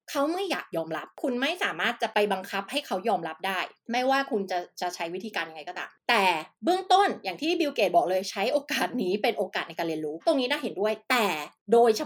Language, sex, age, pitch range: Thai, female, 20-39, 195-270 Hz